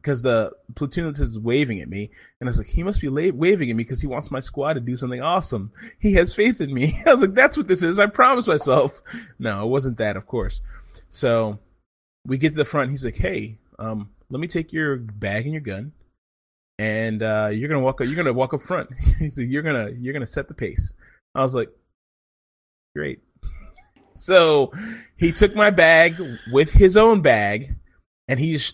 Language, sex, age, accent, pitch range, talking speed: English, male, 20-39, American, 110-160 Hz, 215 wpm